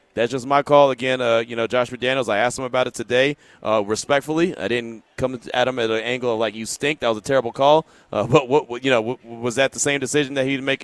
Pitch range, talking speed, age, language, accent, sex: 115-135 Hz, 275 wpm, 30-49, English, American, male